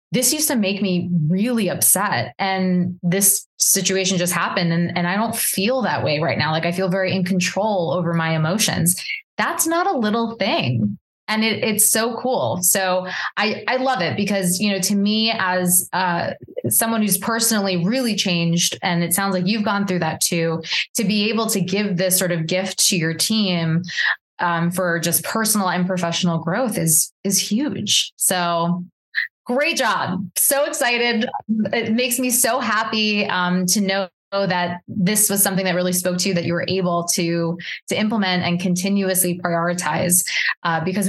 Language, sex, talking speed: English, female, 175 wpm